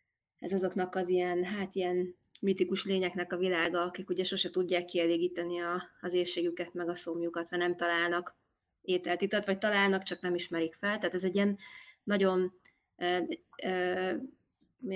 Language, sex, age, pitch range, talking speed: Hungarian, female, 20-39, 175-190 Hz, 155 wpm